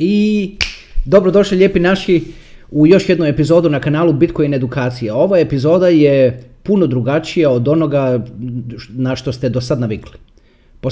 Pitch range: 110-160 Hz